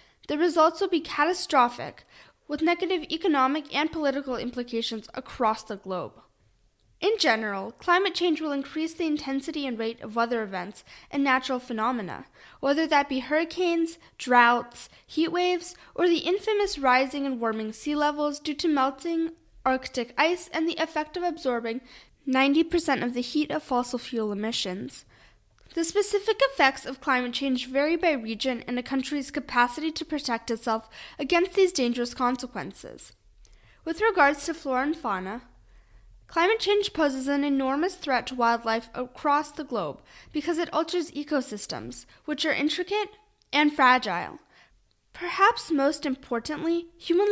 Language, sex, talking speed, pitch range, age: English, female, 145 wpm, 250-330 Hz, 10-29